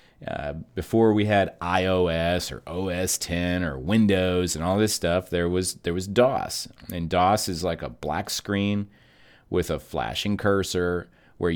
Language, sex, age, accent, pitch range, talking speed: English, male, 30-49, American, 85-105 Hz, 160 wpm